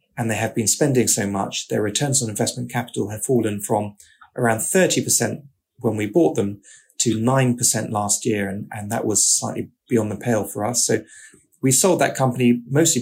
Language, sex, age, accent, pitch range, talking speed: English, male, 30-49, British, 115-135 Hz, 190 wpm